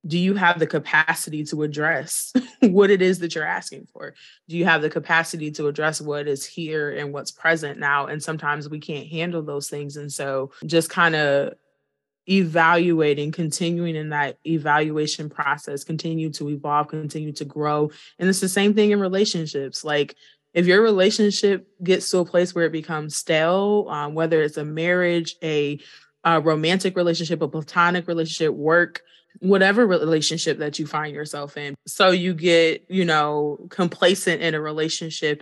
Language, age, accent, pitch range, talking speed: English, 20-39, American, 150-175 Hz, 170 wpm